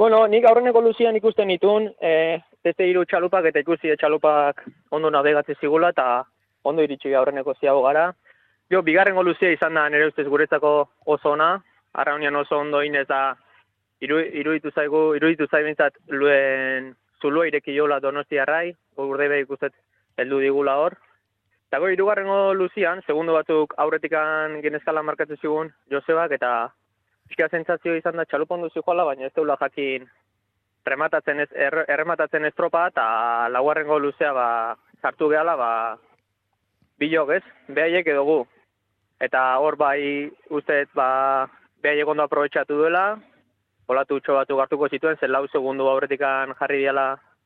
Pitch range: 135-160 Hz